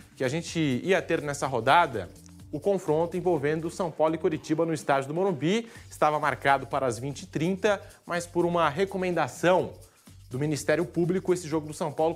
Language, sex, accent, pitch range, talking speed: Portuguese, male, Brazilian, 140-175 Hz, 175 wpm